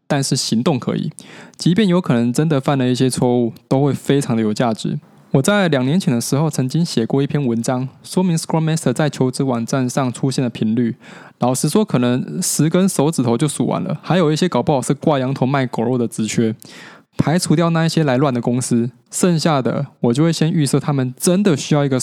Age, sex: 20-39, male